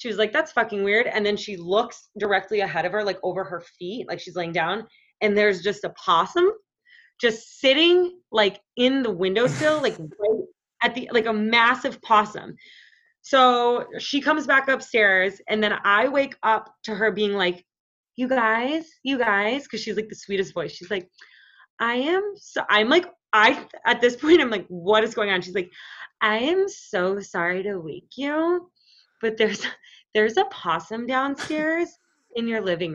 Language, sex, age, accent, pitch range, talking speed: English, female, 20-39, American, 200-270 Hz, 185 wpm